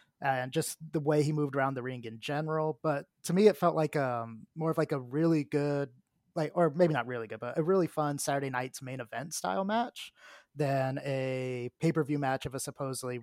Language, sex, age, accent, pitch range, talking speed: English, male, 20-39, American, 130-155 Hz, 215 wpm